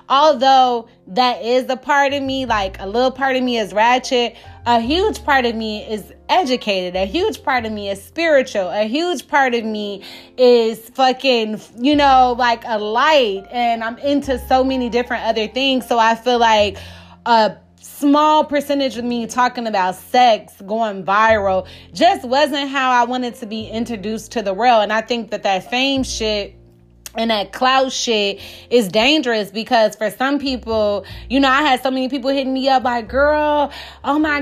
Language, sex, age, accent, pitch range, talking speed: English, female, 20-39, American, 220-275 Hz, 185 wpm